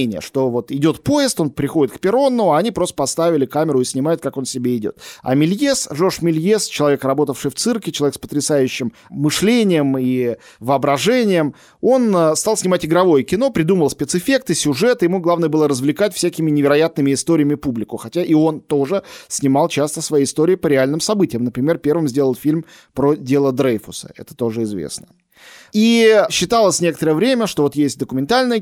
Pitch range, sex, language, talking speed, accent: 135-180 Hz, male, Russian, 165 wpm, native